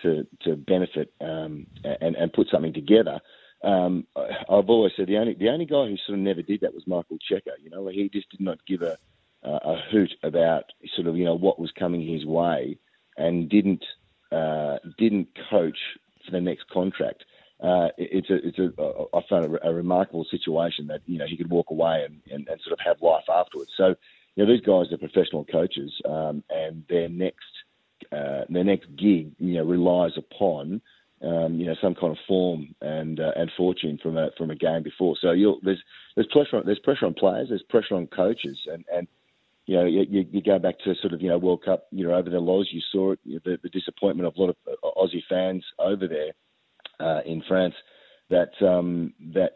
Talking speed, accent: 220 wpm, Australian